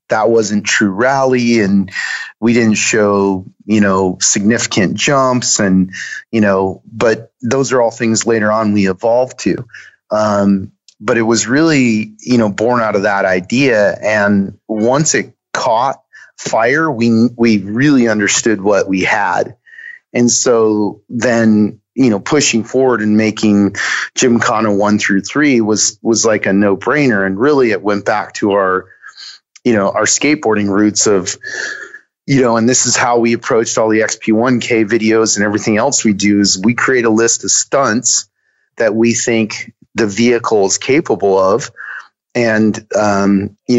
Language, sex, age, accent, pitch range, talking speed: English, male, 30-49, American, 100-120 Hz, 160 wpm